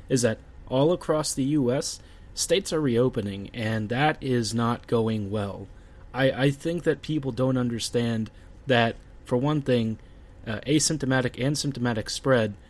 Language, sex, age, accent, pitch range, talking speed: English, male, 30-49, American, 110-130 Hz, 145 wpm